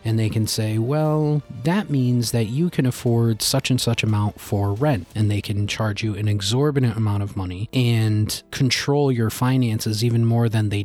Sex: male